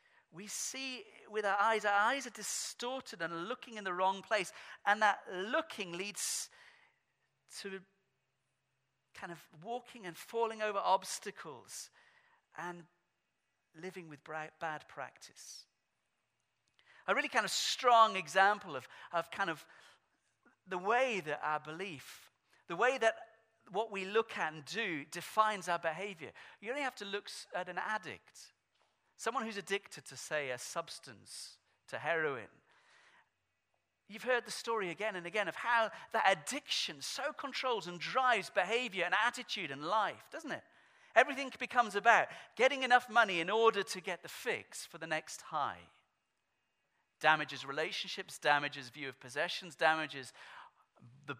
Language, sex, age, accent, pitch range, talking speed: English, male, 40-59, British, 165-230 Hz, 140 wpm